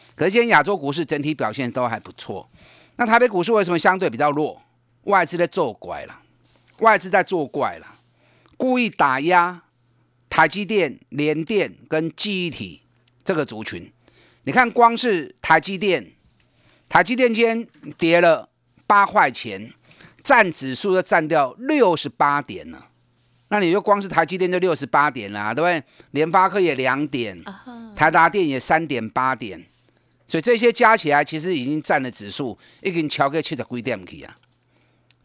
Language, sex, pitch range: Chinese, male, 135-200 Hz